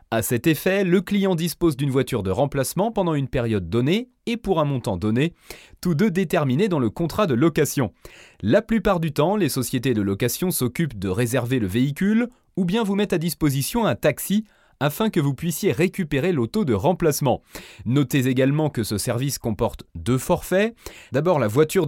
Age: 30-49